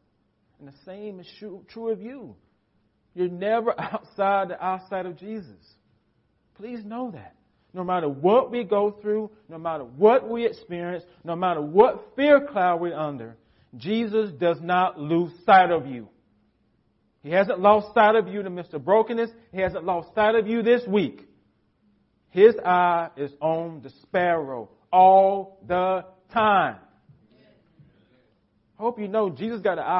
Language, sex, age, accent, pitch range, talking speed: English, male, 40-59, American, 135-200 Hz, 150 wpm